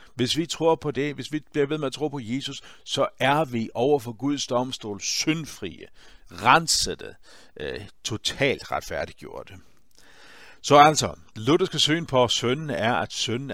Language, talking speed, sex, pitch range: Danish, 160 wpm, male, 105-140 Hz